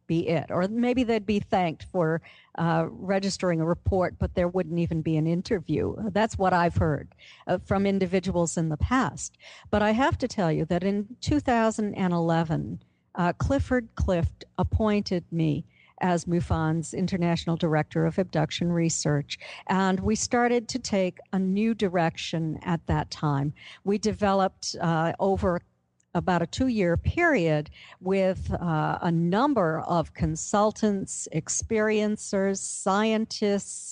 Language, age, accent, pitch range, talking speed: English, 50-69, American, 165-205 Hz, 140 wpm